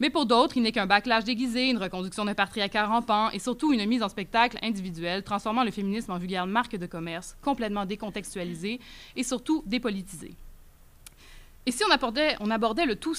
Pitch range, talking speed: 205-265 Hz, 185 wpm